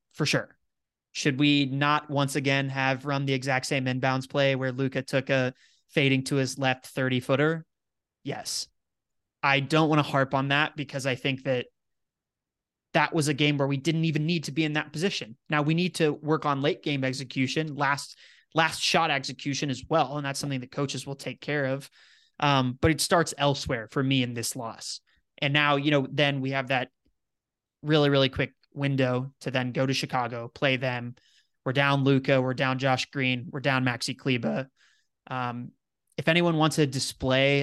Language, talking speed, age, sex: English, 190 wpm, 20-39, male